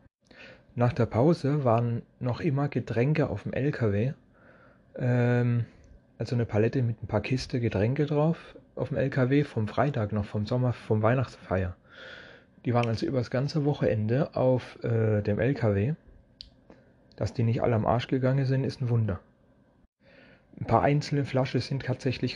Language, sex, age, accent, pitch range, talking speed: German, male, 30-49, German, 110-130 Hz, 155 wpm